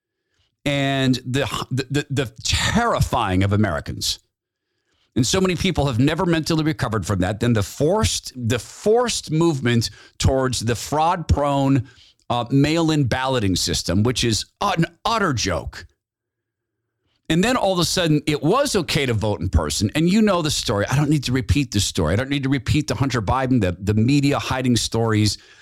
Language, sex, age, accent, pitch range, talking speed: English, male, 50-69, American, 105-155 Hz, 175 wpm